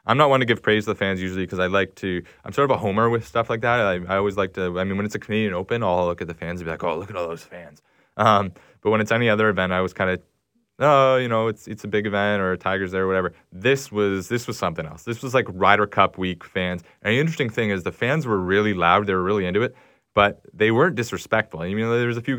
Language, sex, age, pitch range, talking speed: English, male, 20-39, 90-110 Hz, 300 wpm